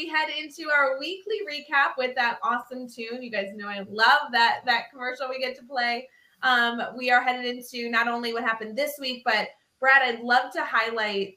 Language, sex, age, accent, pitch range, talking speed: English, female, 20-39, American, 195-235 Hz, 205 wpm